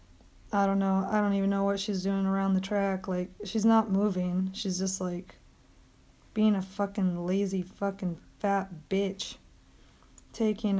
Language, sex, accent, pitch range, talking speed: English, female, American, 190-220 Hz, 155 wpm